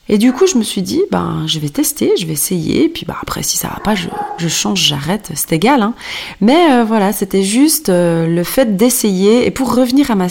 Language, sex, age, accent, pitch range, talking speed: French, female, 30-49, French, 180-245 Hz, 255 wpm